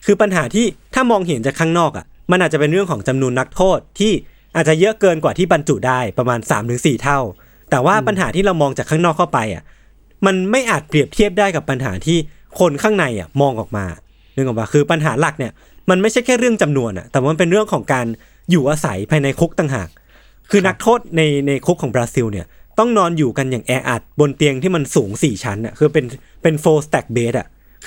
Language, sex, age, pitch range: Thai, male, 20-39, 125-180 Hz